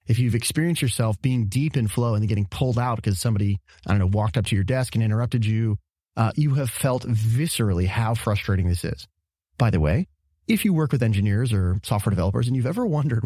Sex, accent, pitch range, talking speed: male, American, 100-130 Hz, 225 wpm